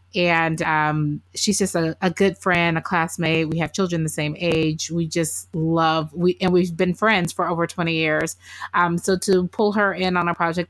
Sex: female